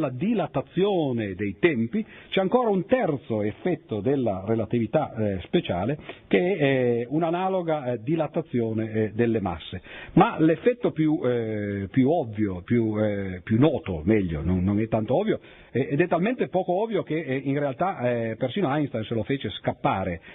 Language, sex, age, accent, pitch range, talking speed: Italian, male, 50-69, native, 115-165 Hz, 160 wpm